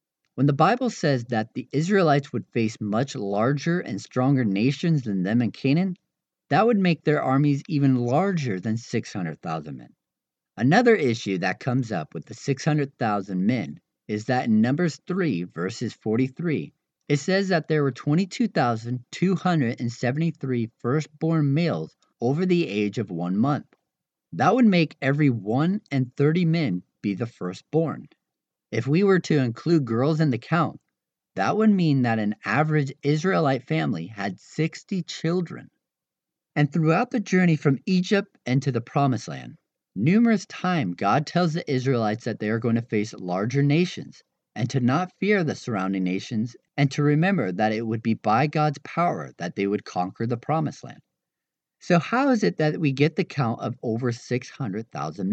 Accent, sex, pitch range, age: American, male, 115-170 Hz, 40-59